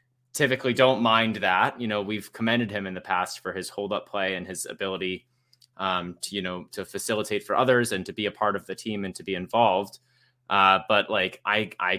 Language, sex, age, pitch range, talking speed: English, male, 20-39, 95-115 Hz, 220 wpm